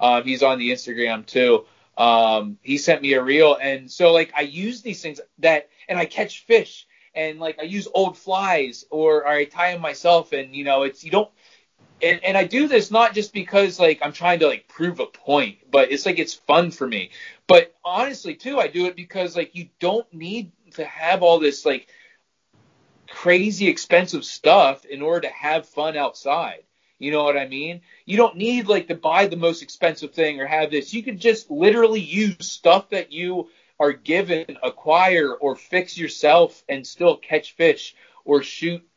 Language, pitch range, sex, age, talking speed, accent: English, 145-195 Hz, male, 30-49, 195 wpm, American